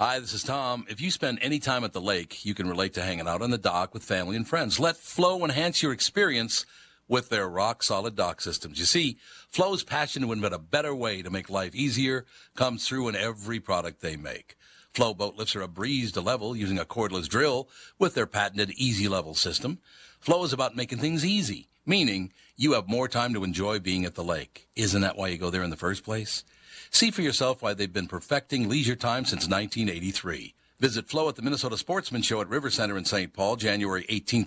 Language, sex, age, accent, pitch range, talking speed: English, male, 60-79, American, 100-140 Hz, 220 wpm